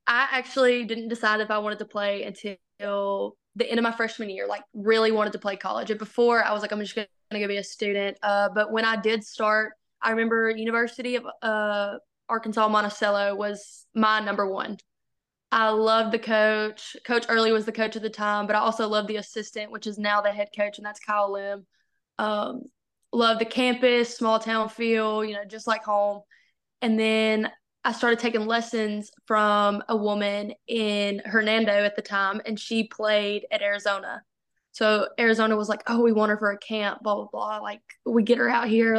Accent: American